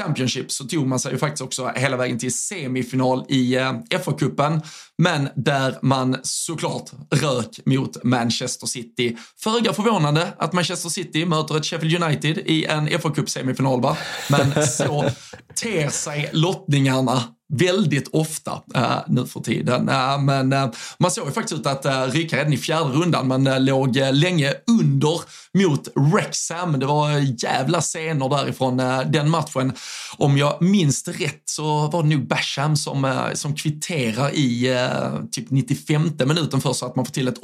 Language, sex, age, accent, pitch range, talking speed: Swedish, male, 20-39, native, 130-160 Hz, 145 wpm